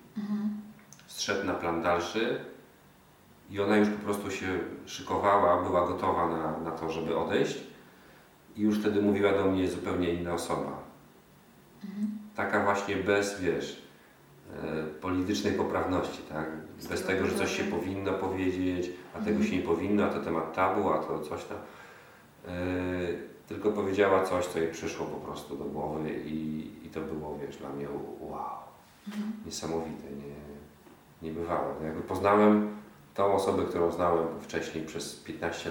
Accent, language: native, Polish